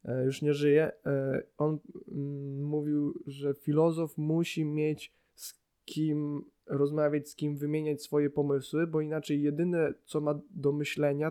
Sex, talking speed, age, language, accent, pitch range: male, 125 wpm, 20-39, Polish, native, 145-170 Hz